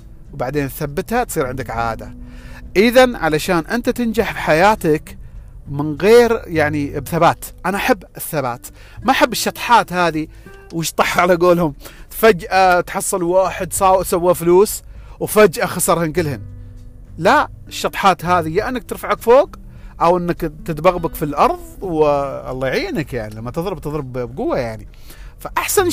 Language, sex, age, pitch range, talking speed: Arabic, male, 40-59, 125-190 Hz, 125 wpm